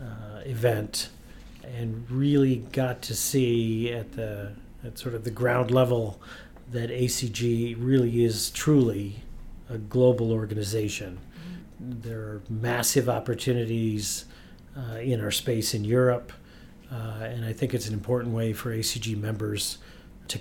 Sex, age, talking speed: male, 40-59, 130 wpm